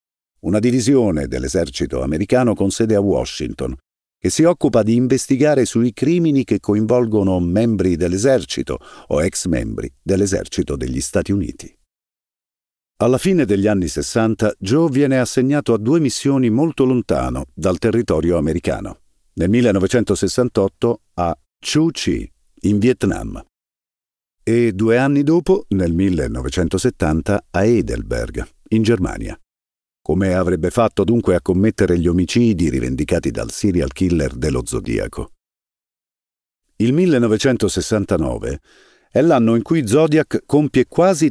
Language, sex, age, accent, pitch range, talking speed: Italian, male, 50-69, native, 90-140 Hz, 120 wpm